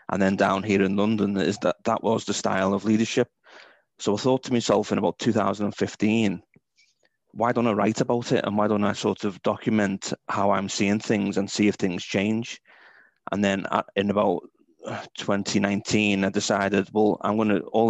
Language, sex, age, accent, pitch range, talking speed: English, male, 30-49, British, 100-110 Hz, 190 wpm